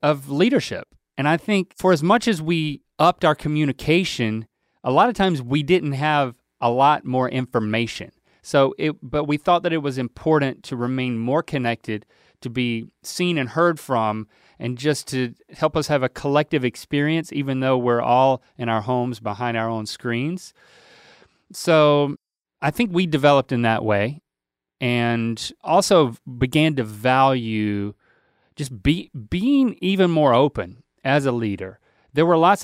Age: 30-49